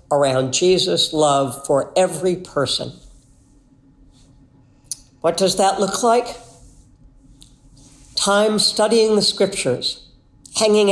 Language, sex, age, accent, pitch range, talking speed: English, female, 60-79, American, 140-200 Hz, 90 wpm